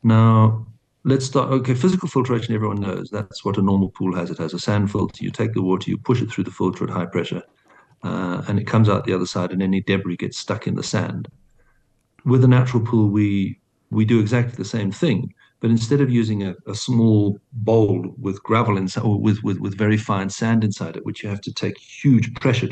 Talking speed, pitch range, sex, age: 225 wpm, 105-125 Hz, male, 50-69